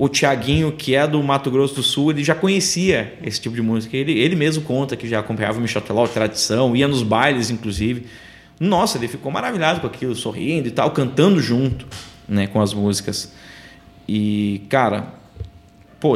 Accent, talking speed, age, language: Brazilian, 180 wpm, 20-39, Portuguese